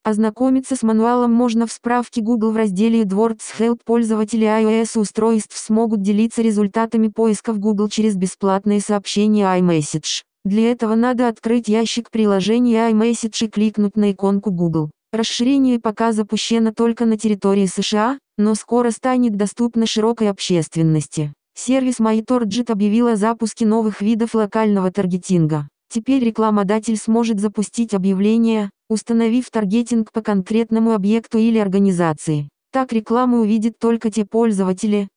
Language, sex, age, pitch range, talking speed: Russian, female, 20-39, 205-230 Hz, 125 wpm